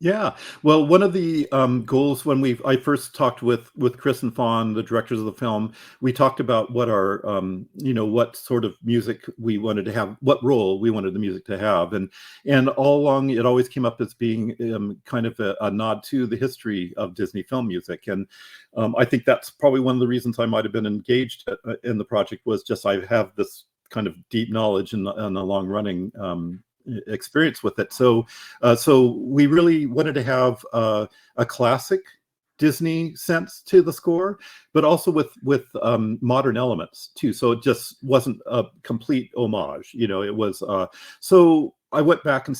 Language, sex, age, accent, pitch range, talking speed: English, male, 50-69, American, 110-135 Hz, 205 wpm